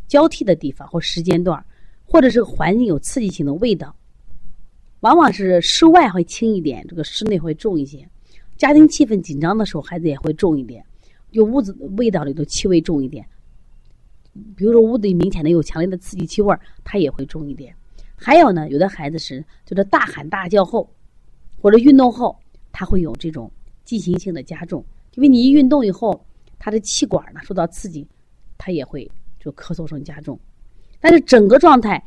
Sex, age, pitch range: female, 30-49, 155-235 Hz